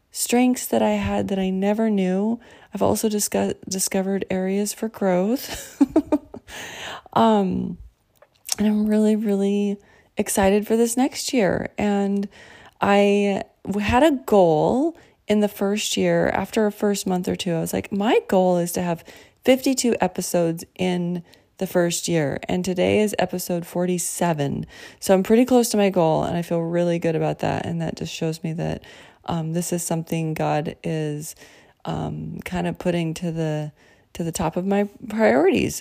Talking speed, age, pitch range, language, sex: 160 wpm, 20-39, 175-215 Hz, English, female